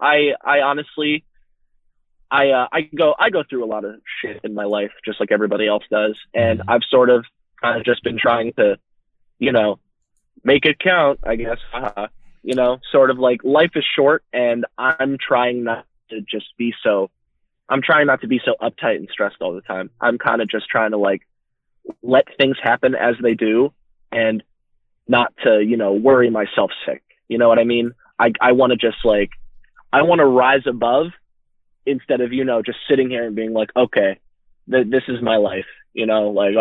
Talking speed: 205 wpm